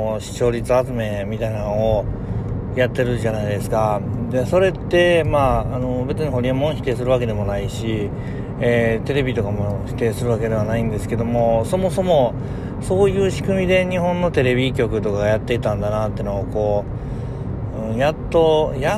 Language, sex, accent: Japanese, male, native